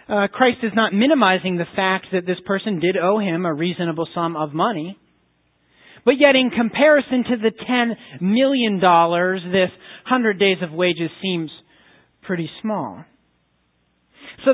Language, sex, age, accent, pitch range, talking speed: English, male, 40-59, American, 170-240 Hz, 145 wpm